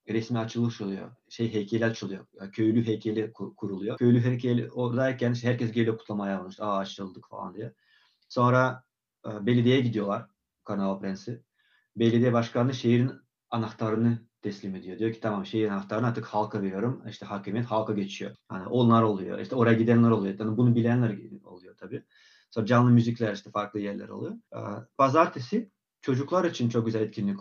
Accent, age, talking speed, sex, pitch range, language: native, 30-49, 160 wpm, male, 110-130 Hz, Turkish